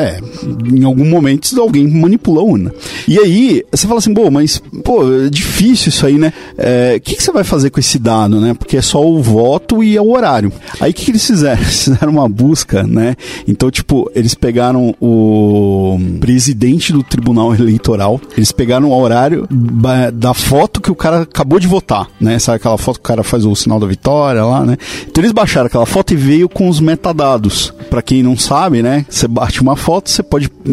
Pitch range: 115-160 Hz